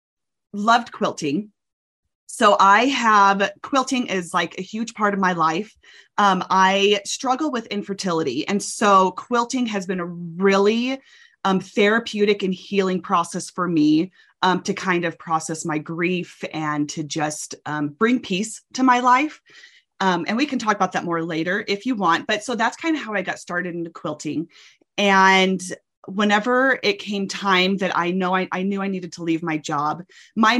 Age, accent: 30-49, American